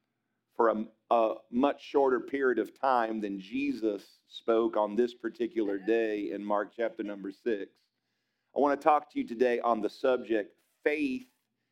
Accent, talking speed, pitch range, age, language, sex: American, 160 wpm, 115-140 Hz, 40-59, English, male